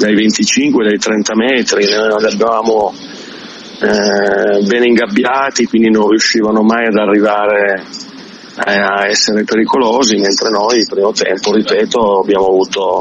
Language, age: Italian, 40-59